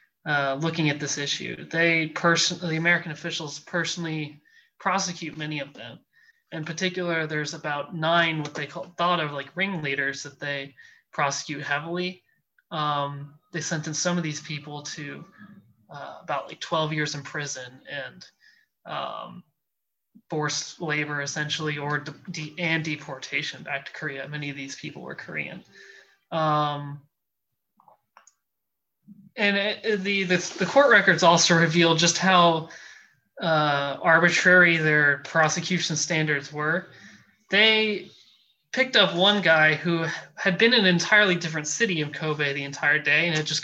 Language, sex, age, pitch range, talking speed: English, male, 20-39, 150-180 Hz, 140 wpm